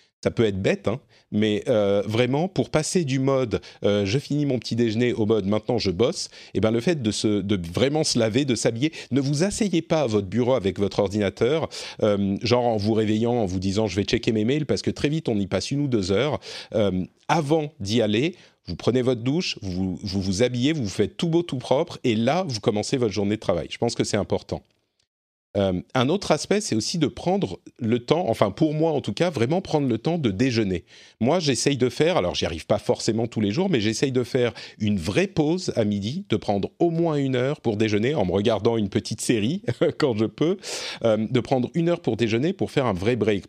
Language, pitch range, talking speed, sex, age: French, 100-135 Hz, 245 wpm, male, 40-59